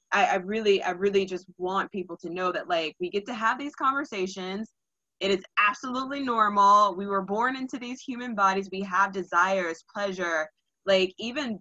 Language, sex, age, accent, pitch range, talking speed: English, female, 20-39, American, 180-210 Hz, 180 wpm